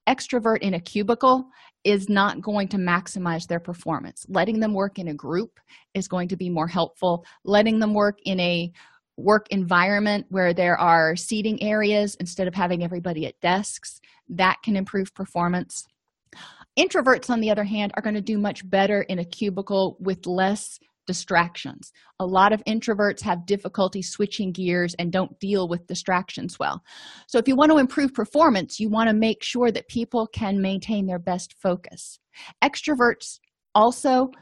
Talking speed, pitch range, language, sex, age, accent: 170 wpm, 180-225 Hz, English, female, 30-49, American